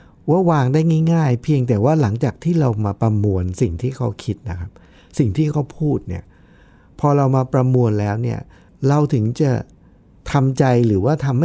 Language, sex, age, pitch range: Thai, male, 60-79, 105-155 Hz